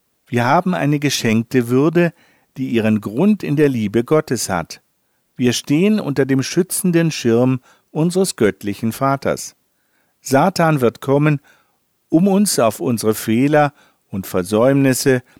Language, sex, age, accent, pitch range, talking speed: German, male, 50-69, German, 115-155 Hz, 125 wpm